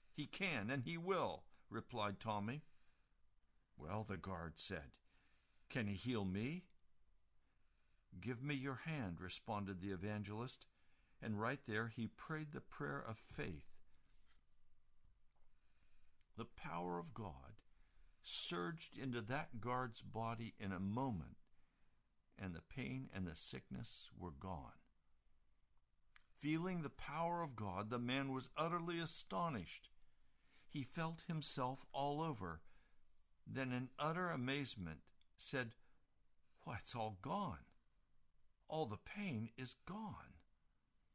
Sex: male